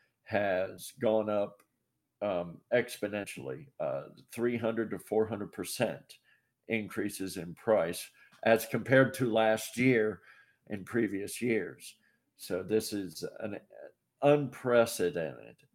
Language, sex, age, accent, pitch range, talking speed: English, male, 50-69, American, 100-120 Hz, 95 wpm